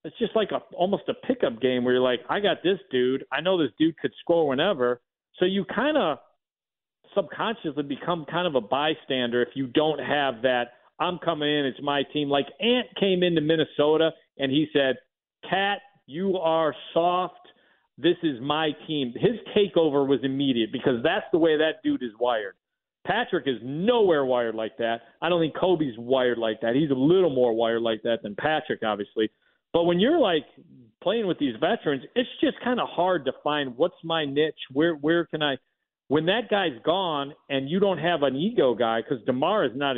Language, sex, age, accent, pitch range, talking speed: English, male, 40-59, American, 125-175 Hz, 200 wpm